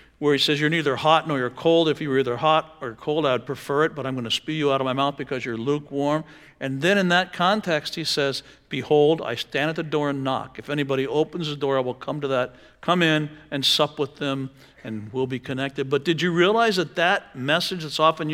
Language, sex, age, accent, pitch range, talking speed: English, male, 60-79, American, 135-170 Hz, 250 wpm